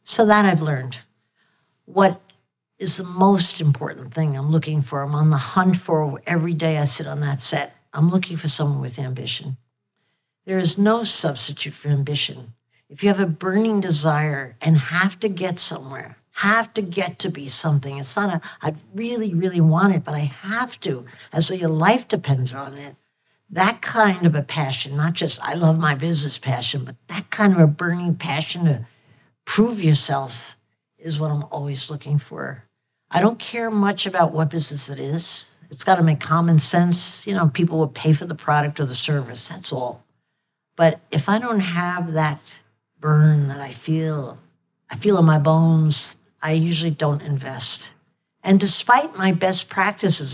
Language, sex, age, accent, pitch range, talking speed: English, female, 60-79, American, 145-185 Hz, 180 wpm